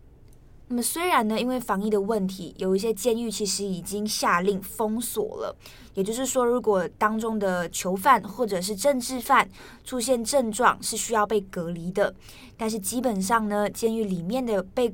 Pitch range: 195-240 Hz